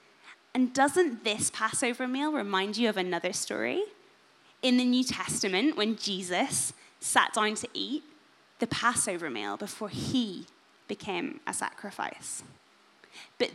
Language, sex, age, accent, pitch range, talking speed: English, female, 10-29, British, 200-260 Hz, 130 wpm